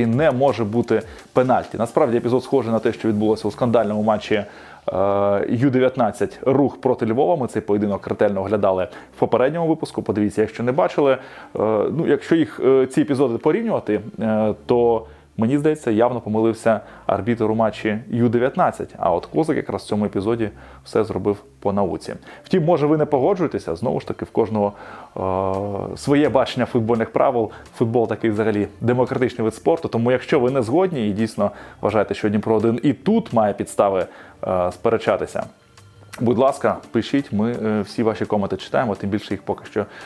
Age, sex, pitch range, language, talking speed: 20-39, male, 105-135 Hz, Ukrainian, 160 wpm